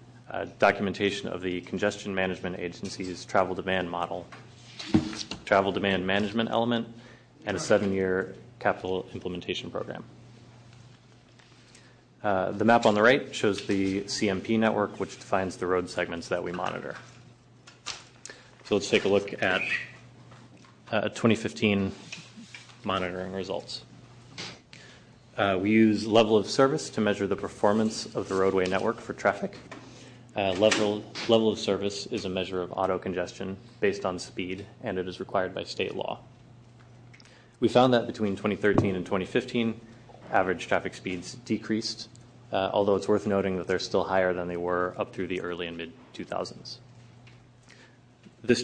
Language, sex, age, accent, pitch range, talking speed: English, male, 30-49, American, 95-120 Hz, 145 wpm